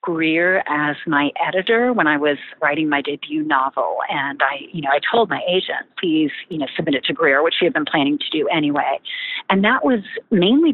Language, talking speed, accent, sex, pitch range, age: English, 210 wpm, American, female, 155-245 Hz, 40-59